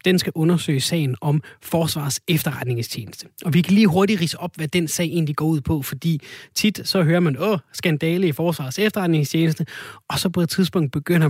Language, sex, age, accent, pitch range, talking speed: Danish, male, 30-49, native, 140-175 Hz, 195 wpm